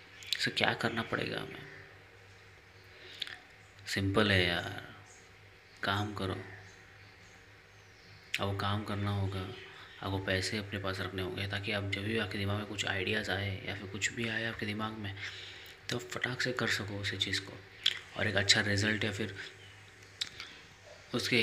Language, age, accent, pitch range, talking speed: Hindi, 20-39, native, 95-105 Hz, 150 wpm